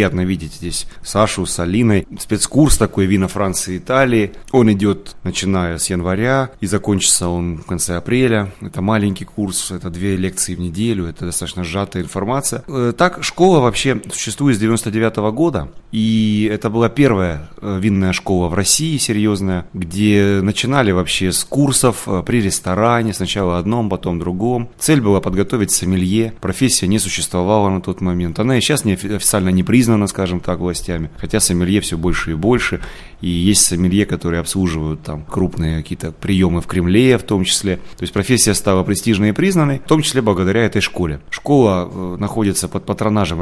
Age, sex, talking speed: 30-49, male, 165 wpm